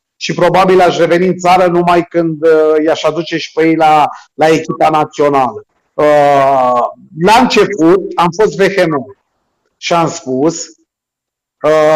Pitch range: 150-185 Hz